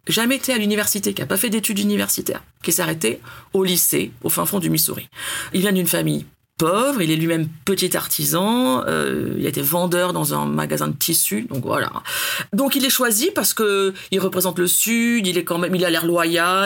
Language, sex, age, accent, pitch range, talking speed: French, female, 40-59, French, 165-215 Hz, 215 wpm